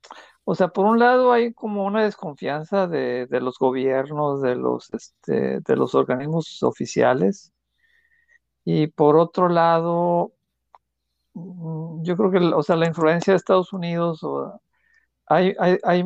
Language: Spanish